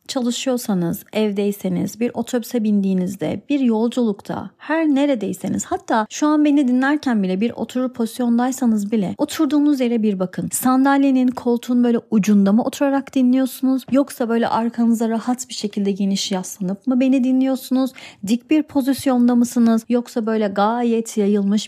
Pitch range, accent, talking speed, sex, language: 200-255 Hz, native, 135 wpm, female, Turkish